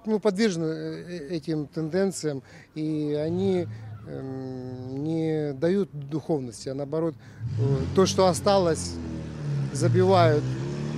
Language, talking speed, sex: Russian, 100 wpm, male